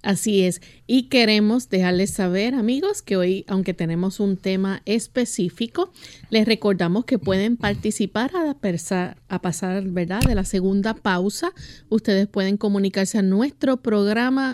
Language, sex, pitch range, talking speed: Spanish, female, 185-230 Hz, 135 wpm